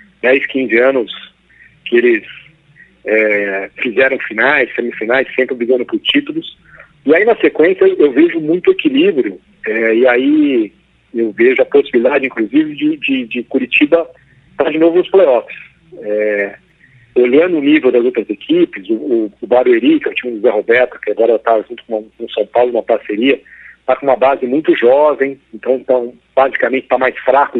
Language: Portuguese